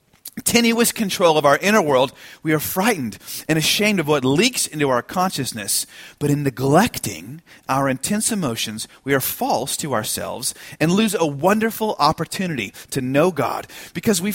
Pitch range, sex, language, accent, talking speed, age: 140-210 Hz, male, English, American, 160 wpm, 30-49